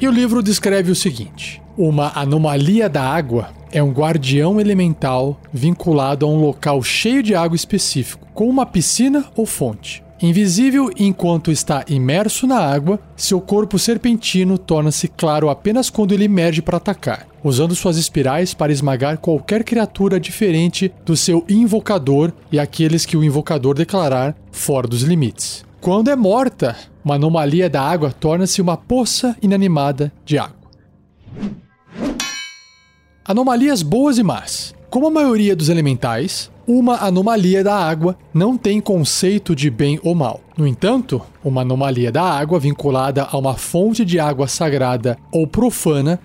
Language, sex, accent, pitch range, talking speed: Portuguese, male, Brazilian, 145-200 Hz, 145 wpm